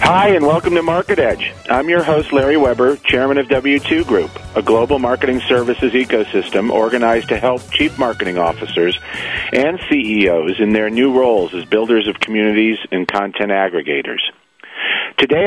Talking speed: 155 wpm